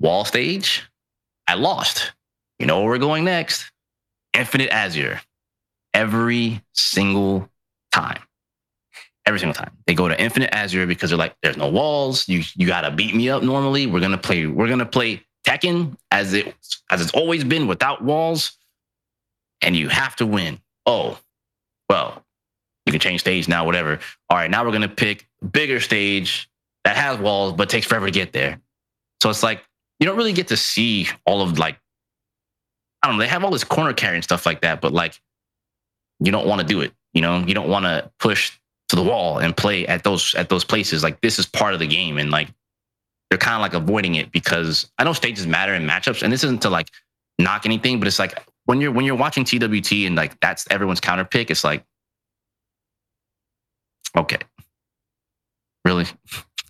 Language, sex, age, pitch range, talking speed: English, male, 20-39, 90-120 Hz, 190 wpm